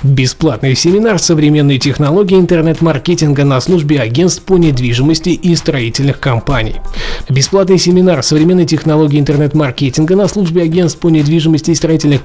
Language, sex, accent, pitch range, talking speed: Russian, male, native, 145-175 Hz, 120 wpm